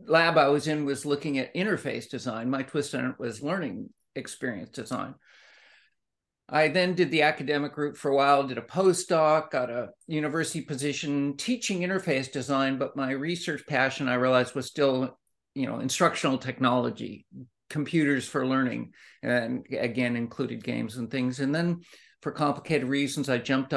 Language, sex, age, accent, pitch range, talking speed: English, male, 50-69, American, 130-155 Hz, 160 wpm